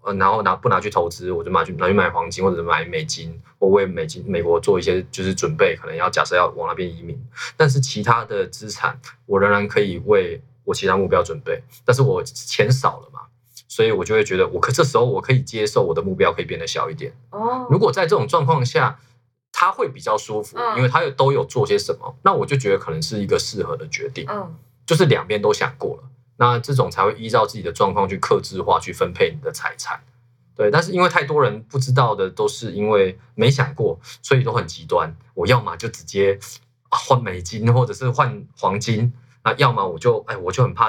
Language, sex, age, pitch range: Chinese, male, 20-39, 120-200 Hz